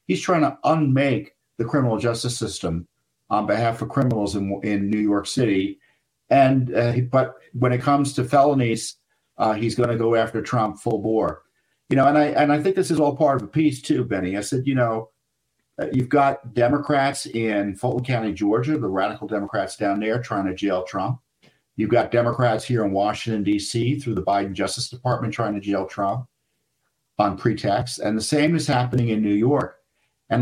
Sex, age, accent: male, 50-69, American